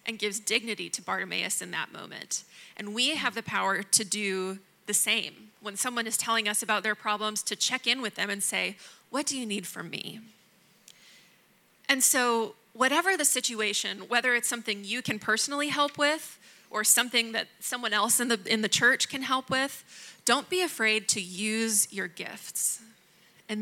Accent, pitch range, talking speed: American, 205-245 Hz, 185 wpm